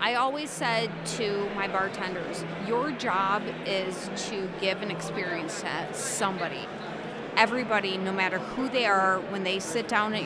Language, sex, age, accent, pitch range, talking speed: English, female, 30-49, American, 185-220 Hz, 150 wpm